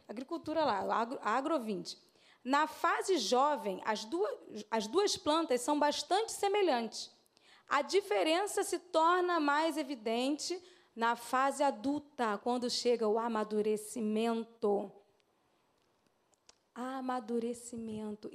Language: Portuguese